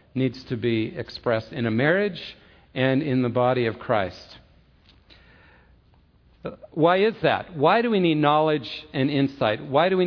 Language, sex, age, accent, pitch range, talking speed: English, male, 50-69, American, 125-165 Hz, 155 wpm